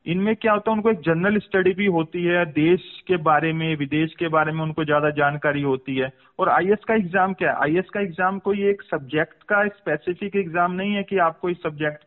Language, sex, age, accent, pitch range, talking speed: Hindi, male, 40-59, native, 155-195 Hz, 225 wpm